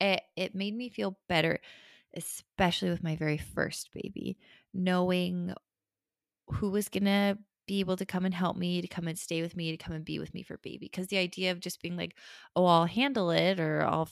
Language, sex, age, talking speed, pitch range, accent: English, female, 20-39, 215 wpm, 160-195 Hz, American